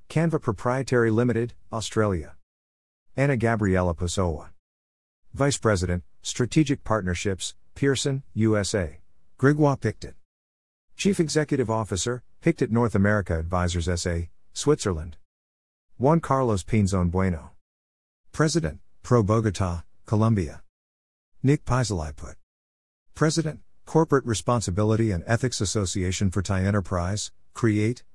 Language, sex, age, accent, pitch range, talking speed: English, male, 50-69, American, 85-125 Hz, 95 wpm